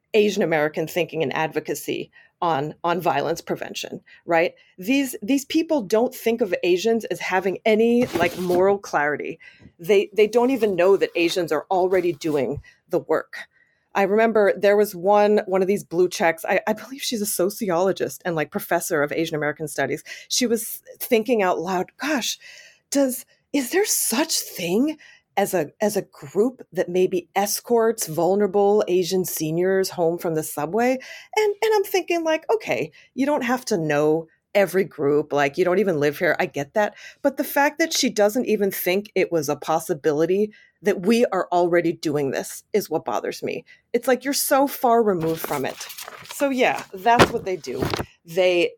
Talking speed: 175 wpm